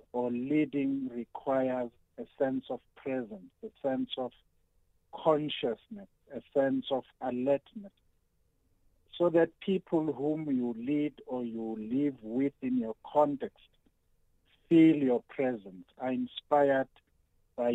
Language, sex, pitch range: English, male, 120-150 Hz